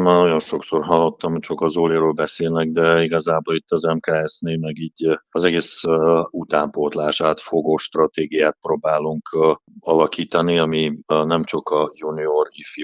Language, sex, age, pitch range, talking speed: Hungarian, male, 50-69, 75-80 Hz, 150 wpm